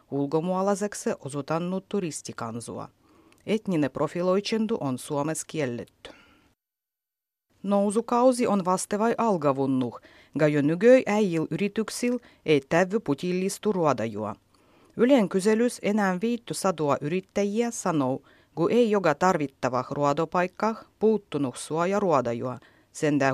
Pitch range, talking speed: 145-205 Hz, 100 wpm